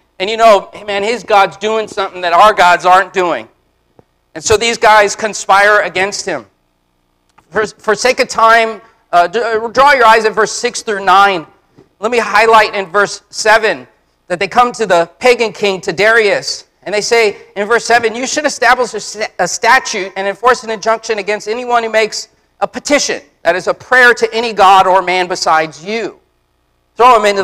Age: 40-59